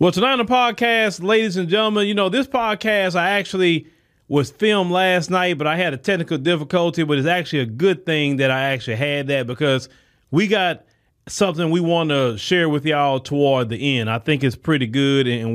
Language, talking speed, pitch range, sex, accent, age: English, 210 wpm, 130-190 Hz, male, American, 30-49